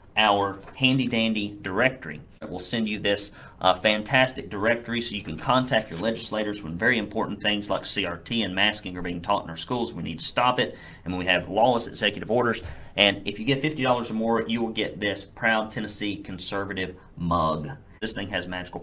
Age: 40-59